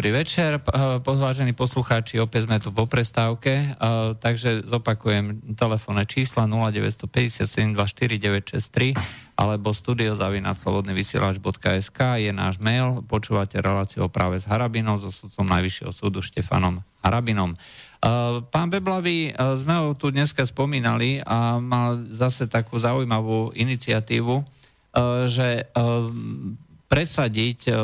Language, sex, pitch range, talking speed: Slovak, male, 105-120 Hz, 105 wpm